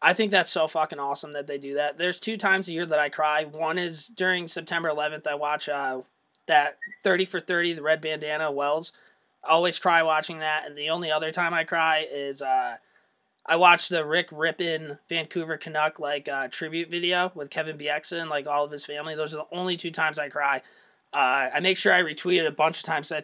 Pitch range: 145-170 Hz